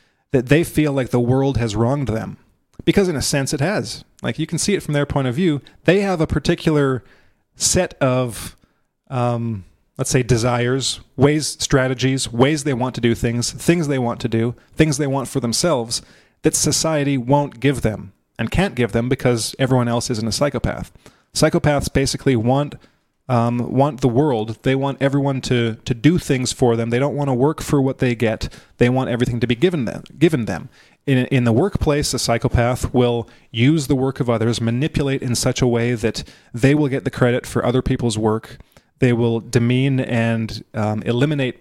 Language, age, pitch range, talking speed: English, 30-49, 115-140 Hz, 195 wpm